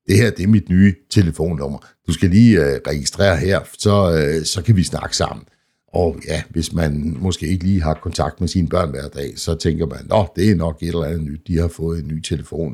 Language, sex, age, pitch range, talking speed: Danish, male, 60-79, 75-90 Hz, 240 wpm